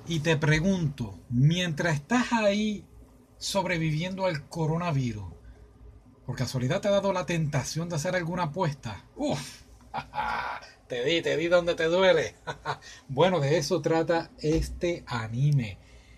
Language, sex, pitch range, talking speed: Spanish, male, 135-185 Hz, 125 wpm